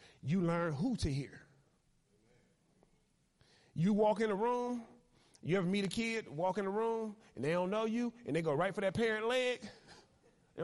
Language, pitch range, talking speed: English, 145-210 Hz, 185 wpm